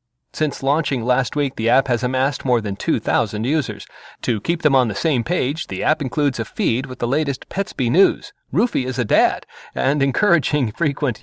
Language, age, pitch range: English, 40-59, 120-150 Hz